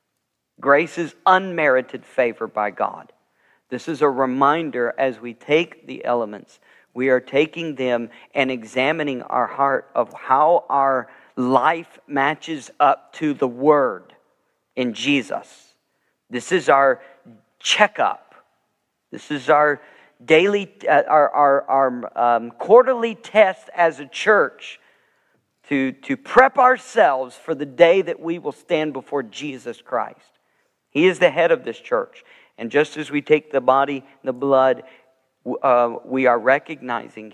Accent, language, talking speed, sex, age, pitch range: American, English, 140 wpm, male, 50-69, 125-155 Hz